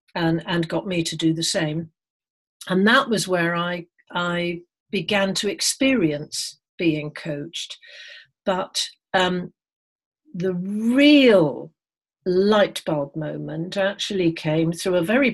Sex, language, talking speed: female, English, 120 wpm